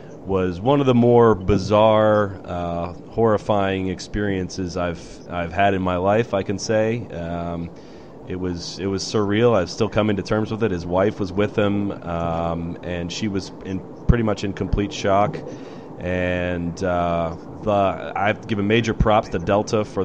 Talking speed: 165 wpm